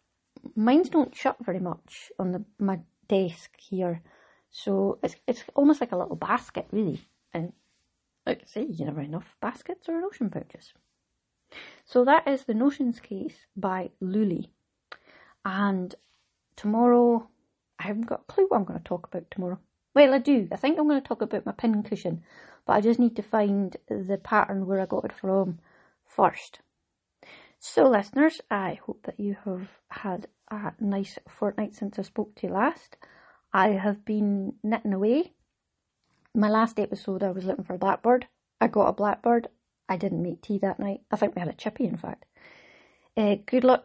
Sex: female